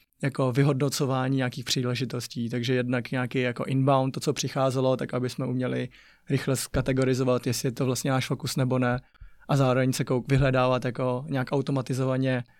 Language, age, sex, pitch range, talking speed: Czech, 20-39, male, 130-150 Hz, 160 wpm